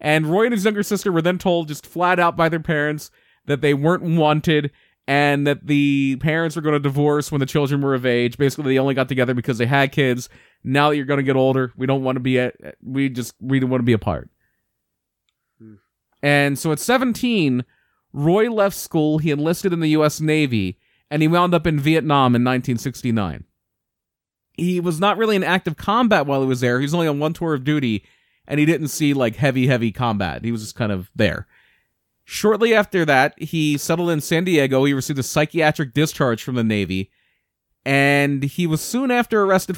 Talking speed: 210 wpm